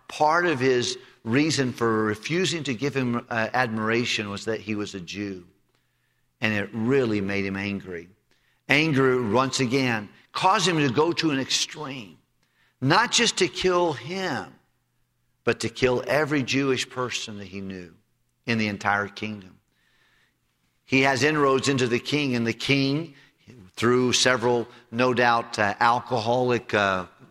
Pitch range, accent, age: 115-150 Hz, American, 50-69